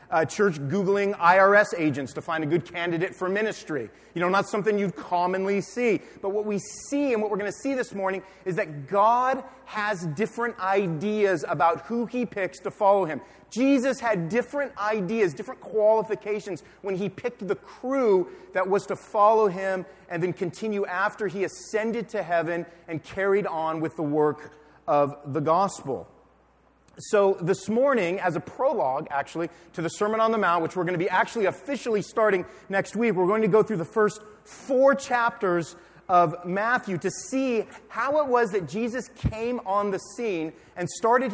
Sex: male